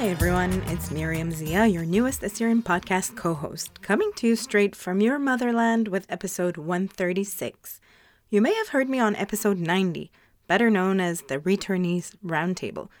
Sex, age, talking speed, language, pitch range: female, 30-49, 155 wpm, English, 175-215 Hz